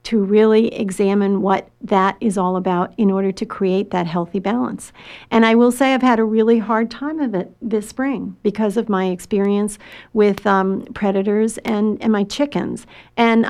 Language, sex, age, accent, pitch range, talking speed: English, female, 50-69, American, 200-235 Hz, 180 wpm